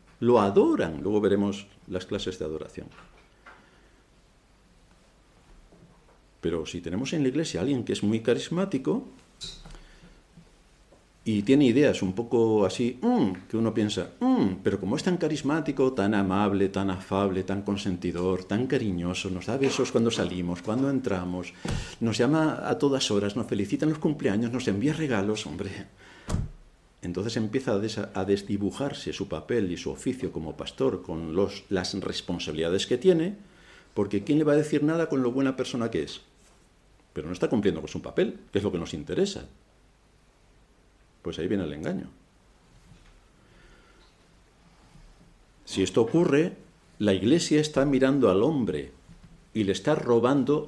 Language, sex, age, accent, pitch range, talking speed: Spanish, male, 50-69, Spanish, 95-135 Hz, 150 wpm